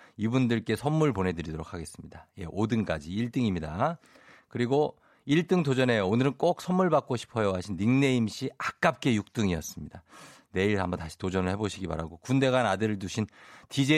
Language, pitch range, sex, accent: Korean, 95-160 Hz, male, native